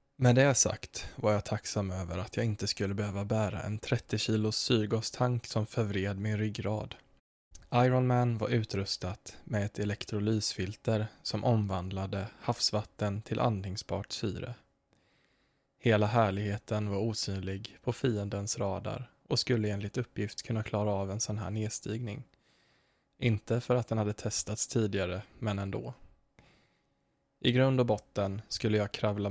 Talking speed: 140 wpm